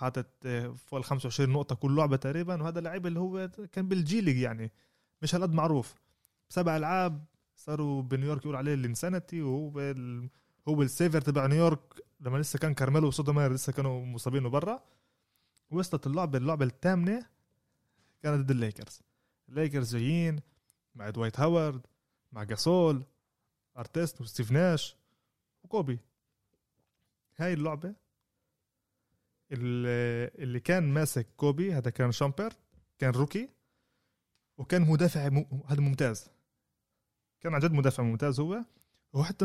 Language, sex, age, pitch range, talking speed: Arabic, male, 20-39, 130-170 Hz, 120 wpm